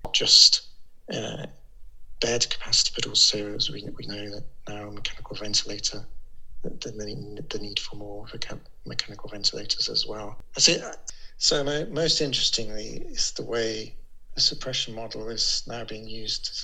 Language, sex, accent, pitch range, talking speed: English, male, British, 105-125 Hz, 150 wpm